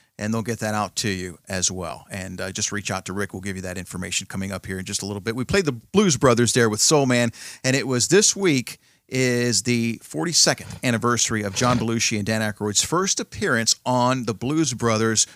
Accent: American